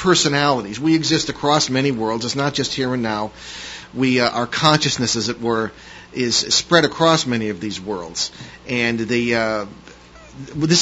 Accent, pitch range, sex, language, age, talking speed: American, 120-150 Hz, male, English, 40-59, 165 wpm